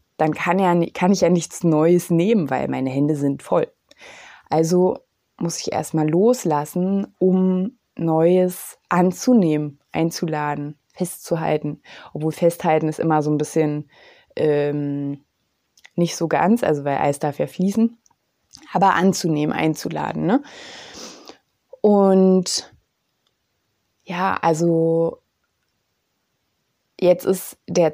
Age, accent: 20-39, German